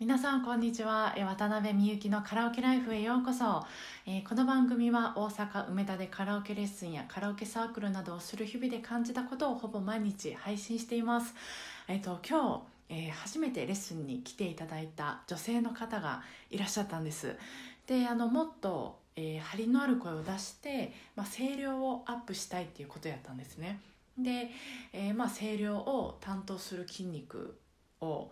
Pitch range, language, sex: 170-235 Hz, Japanese, female